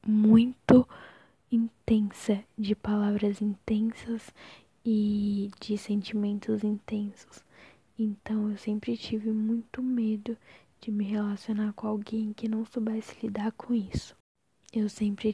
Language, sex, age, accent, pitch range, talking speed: Portuguese, female, 10-29, Brazilian, 205-225 Hz, 110 wpm